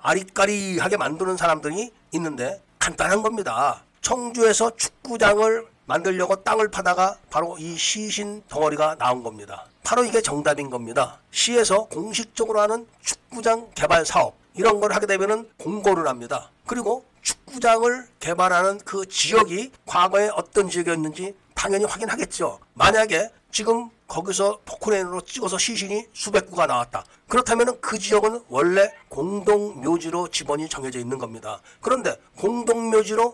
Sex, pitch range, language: male, 165-225 Hz, Korean